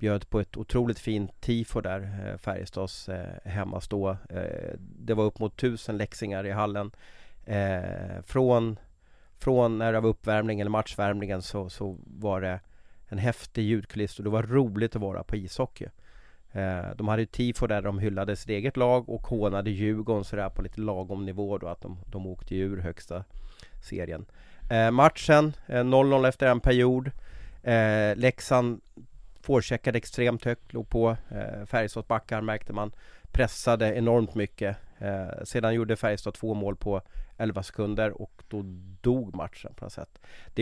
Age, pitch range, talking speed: 30-49, 100-120 Hz, 160 wpm